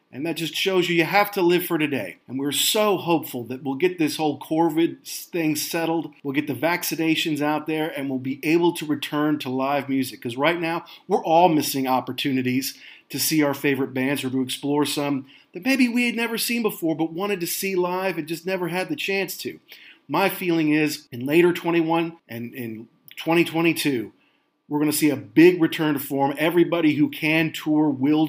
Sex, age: male, 40-59